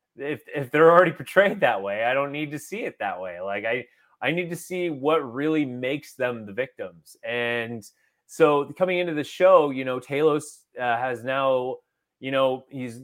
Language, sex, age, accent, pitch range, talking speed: English, male, 20-39, American, 130-170 Hz, 195 wpm